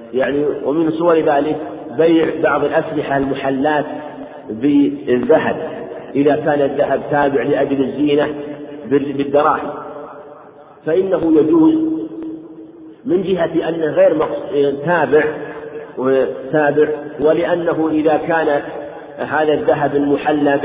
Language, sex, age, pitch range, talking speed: Arabic, male, 50-69, 135-155 Hz, 85 wpm